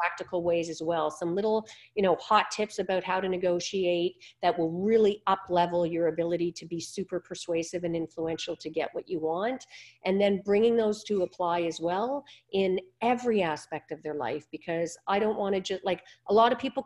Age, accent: 40-59, American